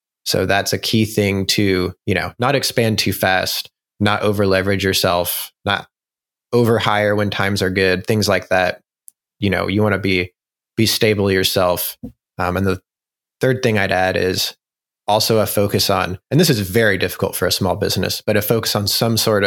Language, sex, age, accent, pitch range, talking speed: English, male, 20-39, American, 95-110 Hz, 190 wpm